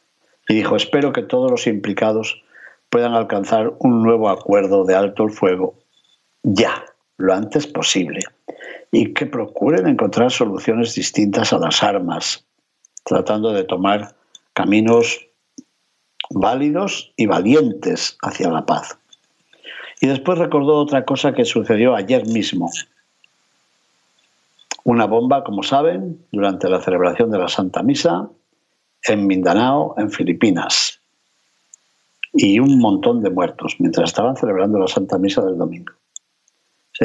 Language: Spanish